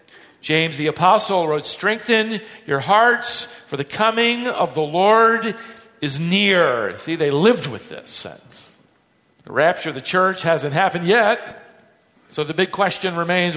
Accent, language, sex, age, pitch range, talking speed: American, English, male, 50-69, 160-215 Hz, 150 wpm